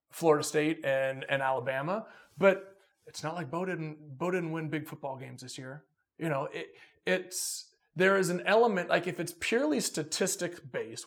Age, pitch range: 30-49, 145-195 Hz